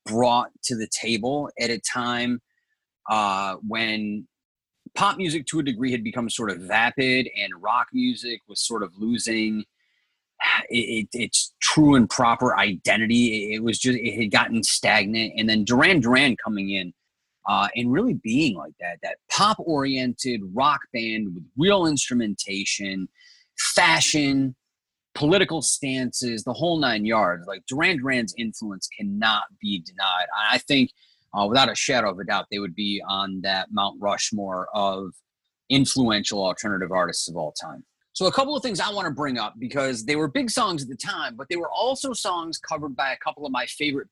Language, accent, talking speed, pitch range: English, American, 170 wpm, 110-150 Hz